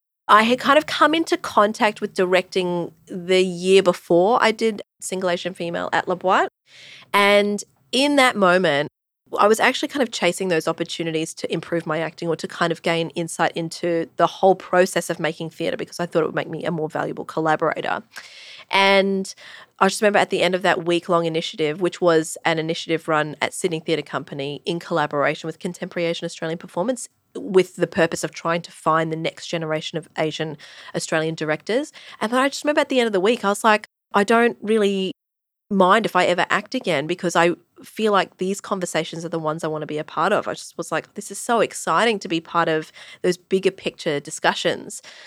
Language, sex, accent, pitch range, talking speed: English, female, Australian, 165-205 Hz, 205 wpm